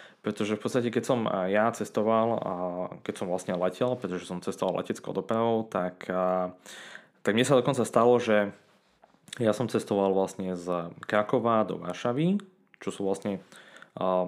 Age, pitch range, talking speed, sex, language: 20-39, 95-110 Hz, 145 wpm, male, Slovak